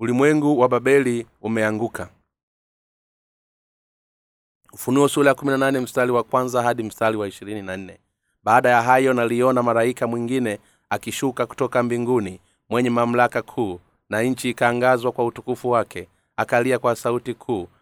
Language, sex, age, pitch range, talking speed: Swahili, male, 30-49, 115-125 Hz, 120 wpm